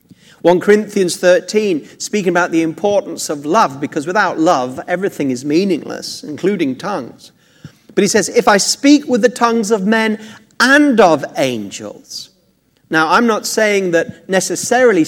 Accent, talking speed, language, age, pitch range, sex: British, 145 wpm, English, 40-59, 160-225 Hz, male